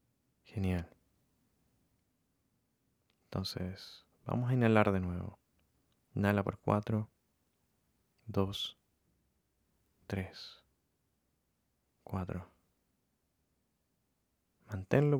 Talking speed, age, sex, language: 55 wpm, 30-49, male, Spanish